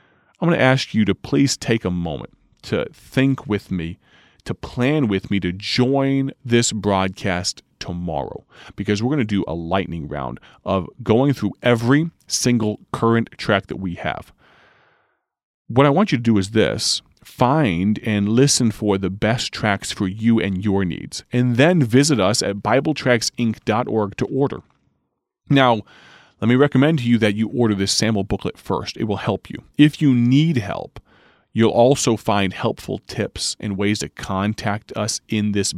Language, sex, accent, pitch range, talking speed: English, male, American, 100-125 Hz, 170 wpm